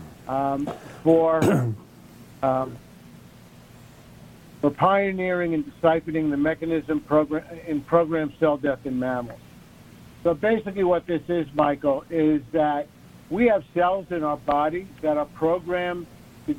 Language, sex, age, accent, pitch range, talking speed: English, male, 60-79, American, 145-175 Hz, 125 wpm